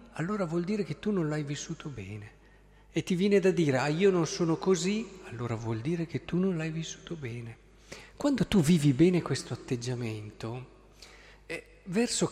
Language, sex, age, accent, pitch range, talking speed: Italian, male, 50-69, native, 135-185 Hz, 175 wpm